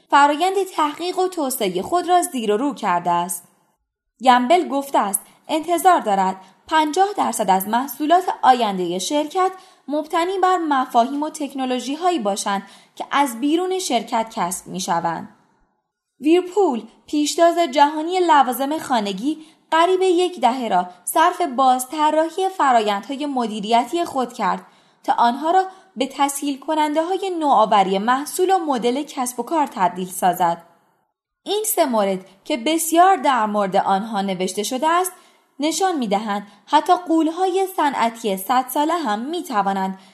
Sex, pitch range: female, 210-335 Hz